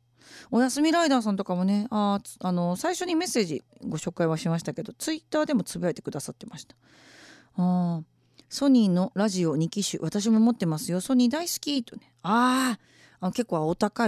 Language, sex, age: Japanese, female, 40-59